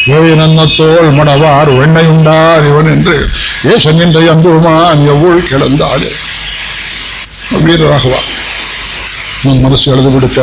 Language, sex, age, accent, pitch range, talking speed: Kannada, male, 60-79, native, 135-160 Hz, 75 wpm